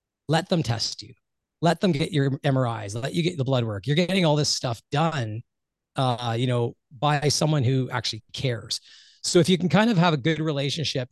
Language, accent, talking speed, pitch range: English, American, 210 wpm, 120-155 Hz